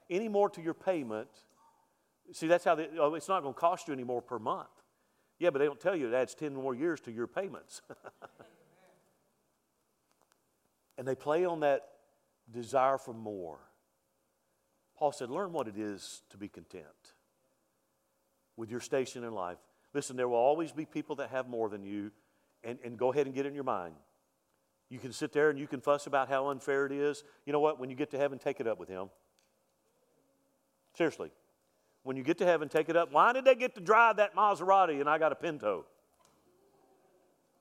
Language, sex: English, male